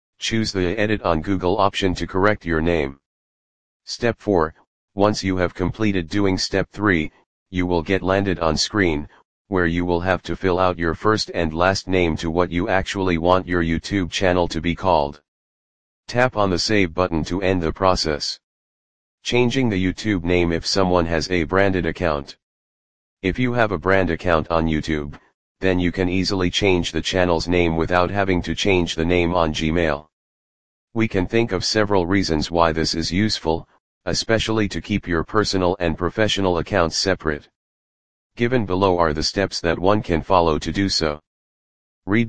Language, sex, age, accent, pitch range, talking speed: English, male, 40-59, American, 80-100 Hz, 175 wpm